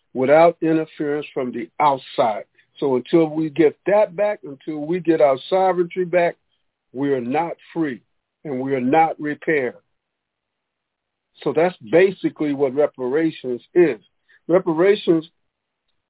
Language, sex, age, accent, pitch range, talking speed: English, male, 50-69, American, 140-180 Hz, 125 wpm